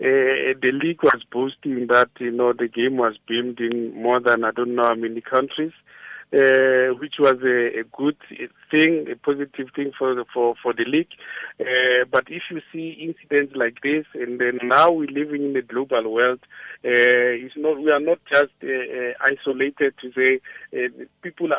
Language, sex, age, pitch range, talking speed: English, male, 50-69, 130-165 Hz, 185 wpm